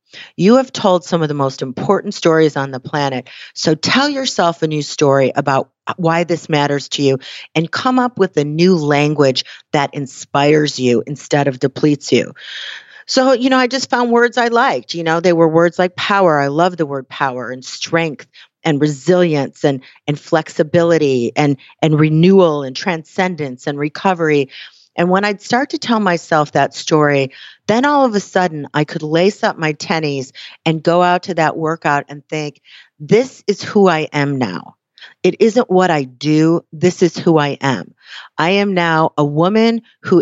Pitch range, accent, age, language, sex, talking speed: 145-185 Hz, American, 40-59, English, female, 185 wpm